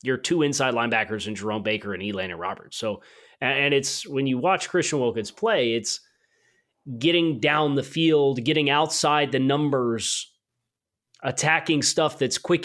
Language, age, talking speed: English, 30-49, 155 wpm